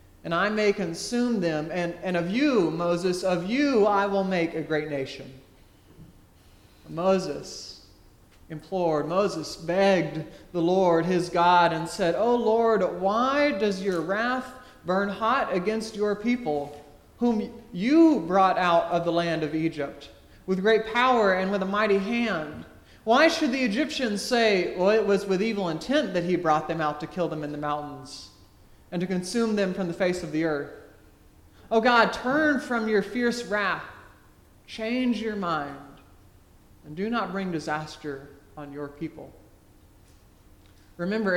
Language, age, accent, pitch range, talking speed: English, 40-59, American, 150-215 Hz, 155 wpm